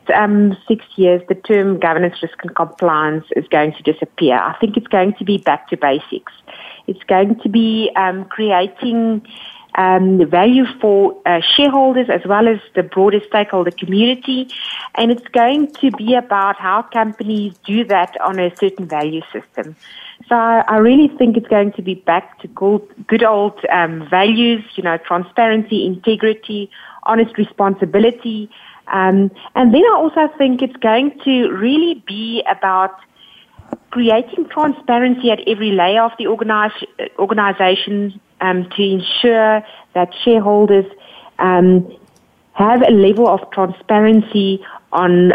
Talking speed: 145 wpm